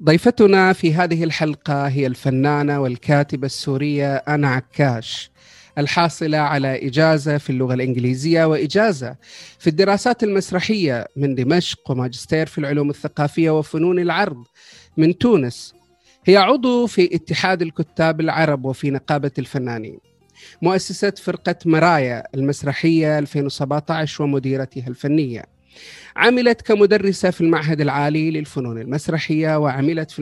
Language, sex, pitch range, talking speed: Arabic, male, 140-175 Hz, 110 wpm